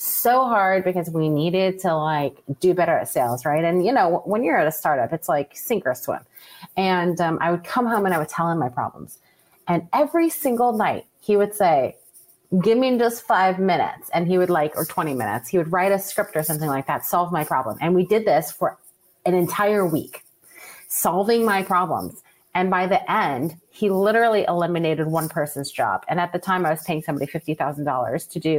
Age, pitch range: 30-49, 155-205 Hz